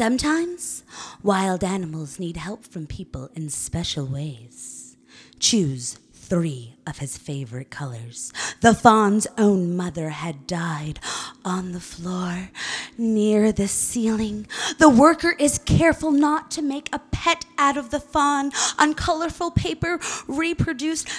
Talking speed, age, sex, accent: 125 wpm, 20-39, female, American